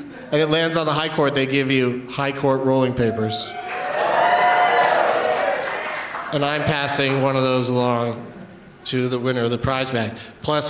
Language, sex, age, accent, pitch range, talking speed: English, male, 40-59, American, 130-170 Hz, 165 wpm